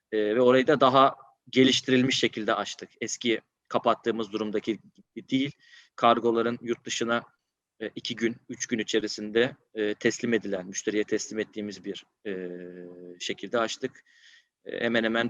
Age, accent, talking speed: 30-49, native, 130 wpm